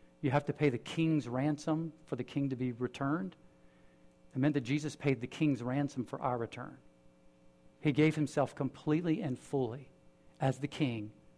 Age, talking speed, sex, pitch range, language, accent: 50-69, 175 wpm, male, 120-160 Hz, English, American